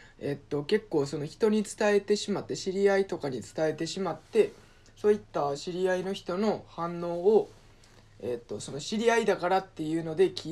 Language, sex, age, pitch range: Japanese, male, 20-39, 145-190 Hz